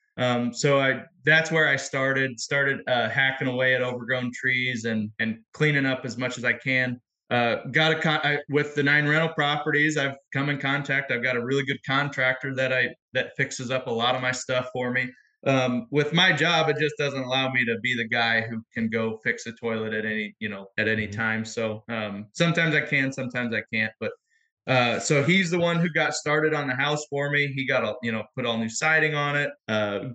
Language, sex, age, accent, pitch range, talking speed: English, male, 20-39, American, 120-145 Hz, 225 wpm